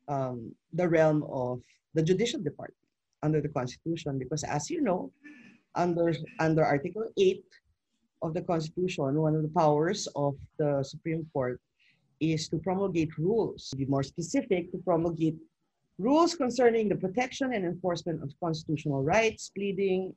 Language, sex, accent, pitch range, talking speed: English, female, Filipino, 145-195 Hz, 145 wpm